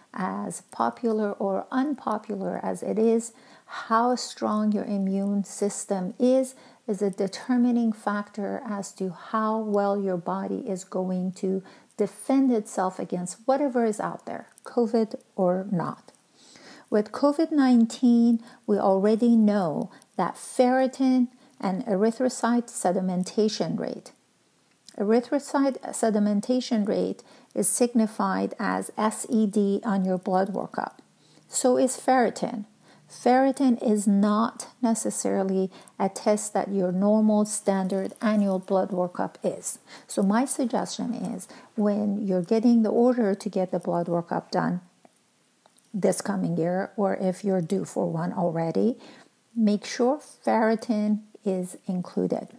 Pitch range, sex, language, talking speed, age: 195-240 Hz, female, English, 120 wpm, 50-69